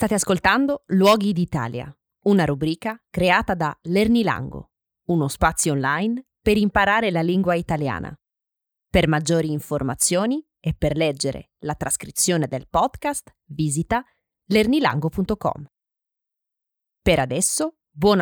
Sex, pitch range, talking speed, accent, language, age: female, 155-225 Hz, 105 wpm, native, Italian, 20-39